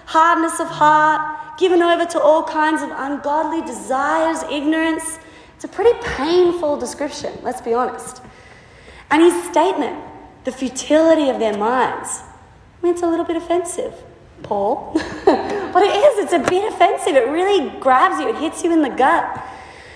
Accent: Australian